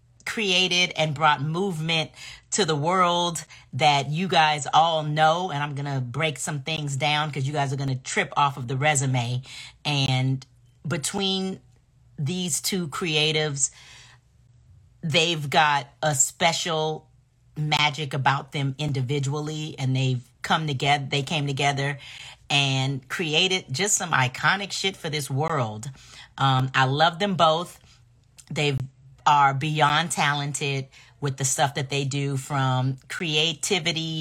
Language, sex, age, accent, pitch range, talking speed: English, female, 40-59, American, 130-165 Hz, 130 wpm